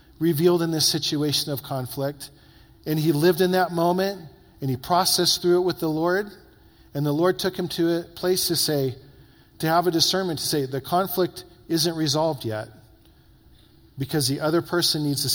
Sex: male